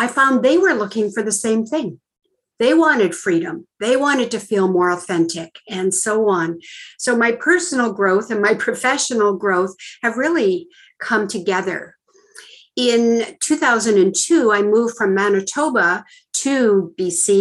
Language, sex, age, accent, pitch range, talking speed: English, female, 50-69, American, 195-255 Hz, 140 wpm